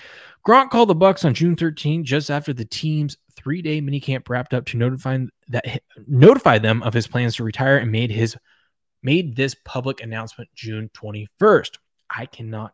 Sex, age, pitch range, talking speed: male, 20-39, 115-150 Hz, 170 wpm